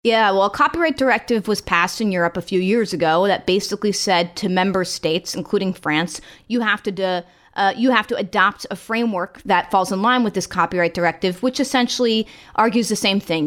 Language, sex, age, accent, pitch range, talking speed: English, female, 30-49, American, 180-225 Hz, 200 wpm